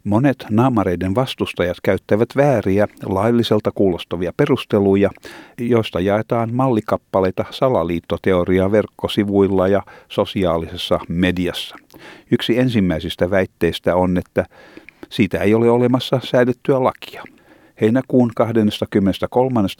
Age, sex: 50-69, male